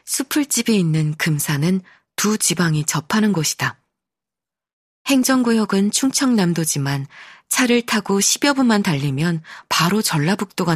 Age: 20-39